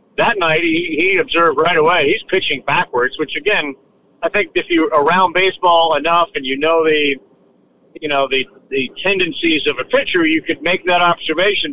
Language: English